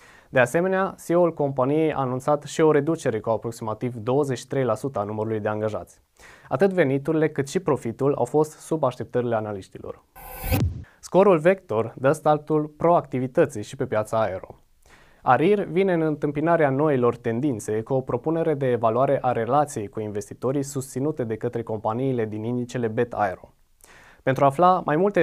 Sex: male